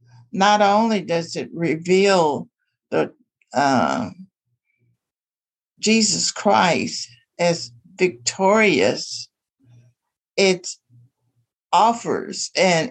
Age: 60-79